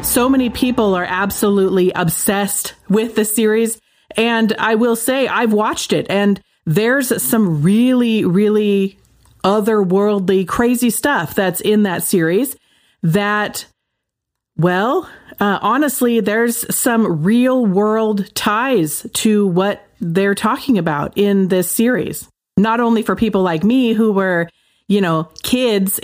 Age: 40-59